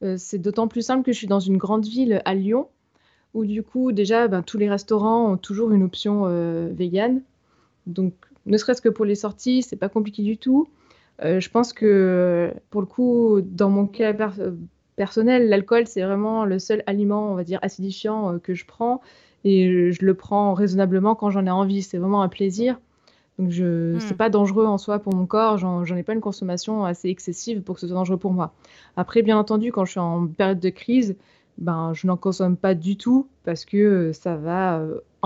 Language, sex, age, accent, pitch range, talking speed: French, female, 20-39, French, 185-220 Hz, 215 wpm